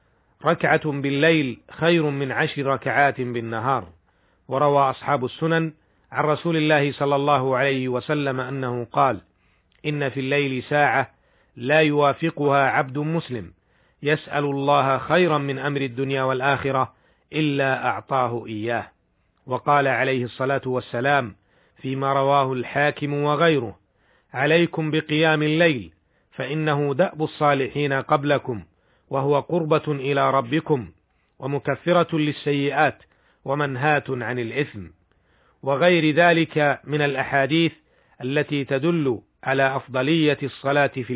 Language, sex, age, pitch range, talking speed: Arabic, male, 40-59, 130-150 Hz, 105 wpm